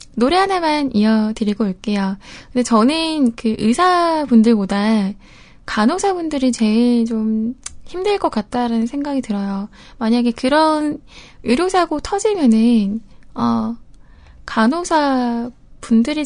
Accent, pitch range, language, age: native, 220-275 Hz, Korean, 10-29